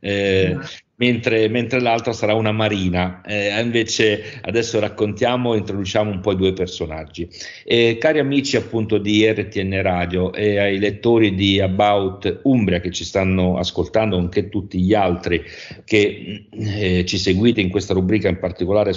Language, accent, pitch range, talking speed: Italian, native, 90-110 Hz, 150 wpm